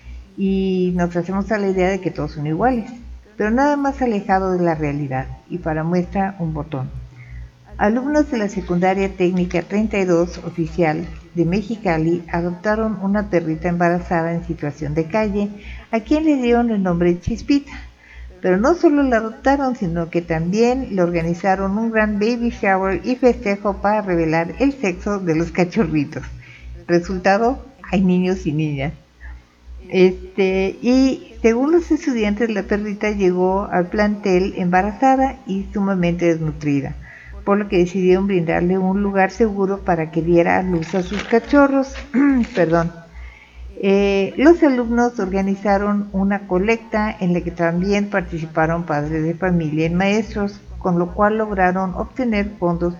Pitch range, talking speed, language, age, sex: 170-215 Hz, 145 wpm, Spanish, 50-69, female